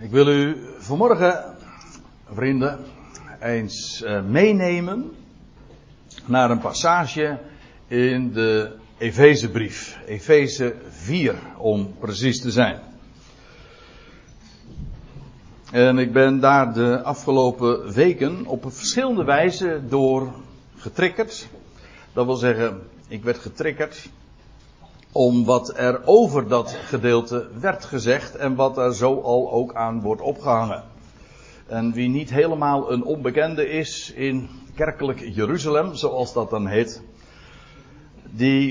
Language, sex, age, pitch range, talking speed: Dutch, male, 60-79, 115-145 Hz, 105 wpm